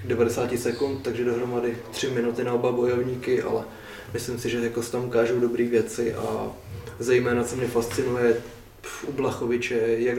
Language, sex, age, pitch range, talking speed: Czech, male, 20-39, 120-130 Hz, 155 wpm